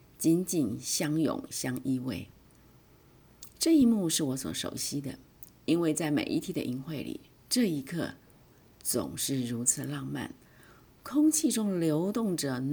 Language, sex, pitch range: Chinese, female, 140-195 Hz